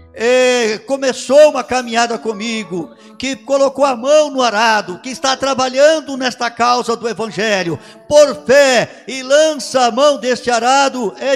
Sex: male